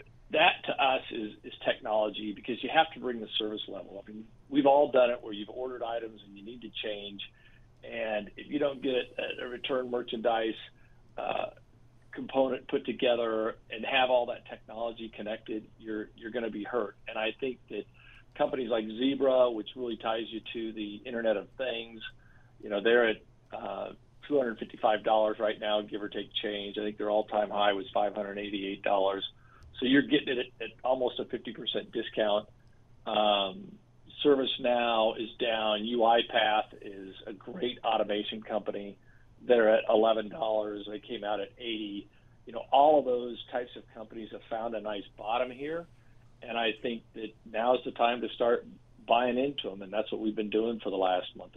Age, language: 50-69, English